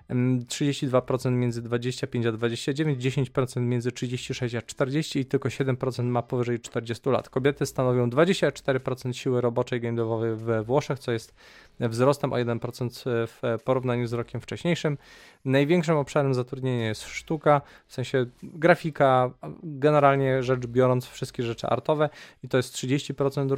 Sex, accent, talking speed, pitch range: male, native, 135 wpm, 120-140 Hz